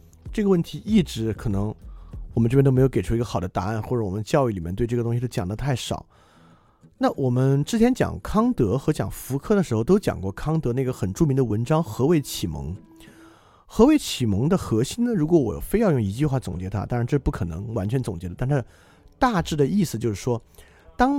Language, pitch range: Chinese, 105-155 Hz